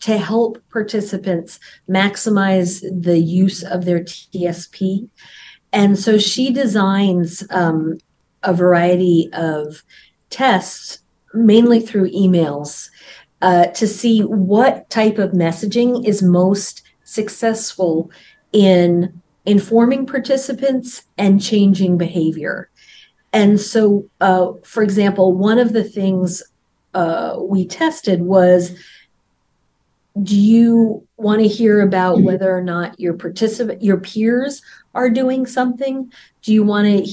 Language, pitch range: English, 180-220 Hz